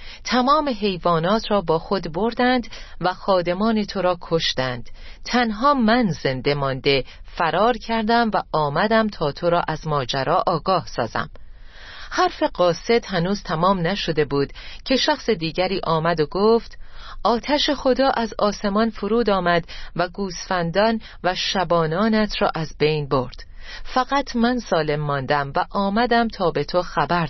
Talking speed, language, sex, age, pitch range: 135 wpm, Persian, female, 40-59, 160-215 Hz